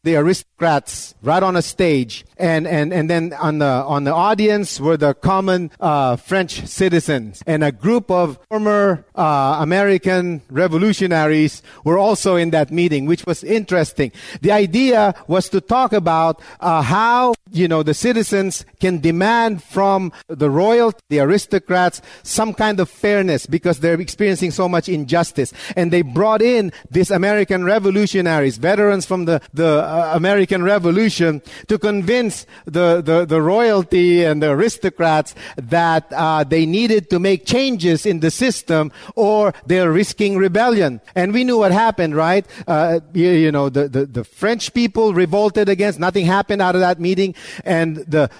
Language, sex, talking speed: English, male, 155 wpm